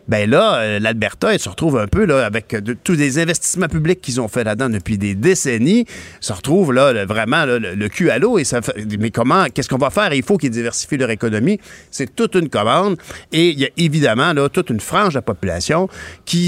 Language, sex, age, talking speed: French, male, 50-69, 235 wpm